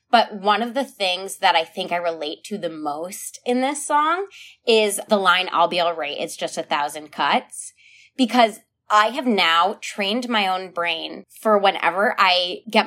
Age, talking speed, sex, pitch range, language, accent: 20-39, 180 wpm, female, 180-230 Hz, English, American